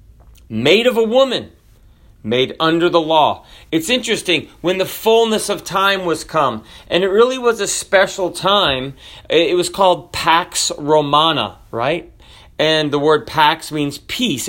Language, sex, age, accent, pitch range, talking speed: English, male, 40-59, American, 155-195 Hz, 150 wpm